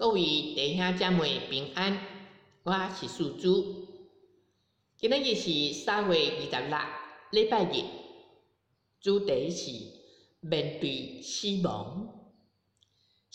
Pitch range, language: 165-220 Hz, Chinese